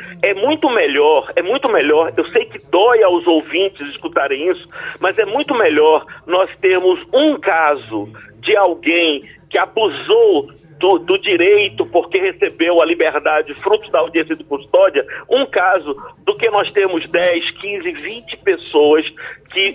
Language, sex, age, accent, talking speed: Portuguese, male, 50-69, Brazilian, 150 wpm